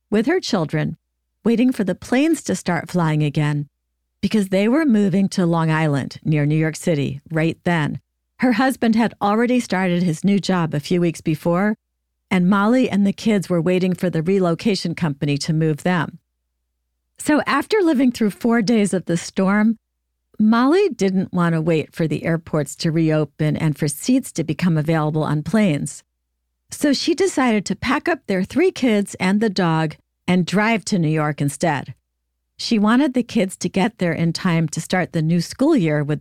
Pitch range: 155-215 Hz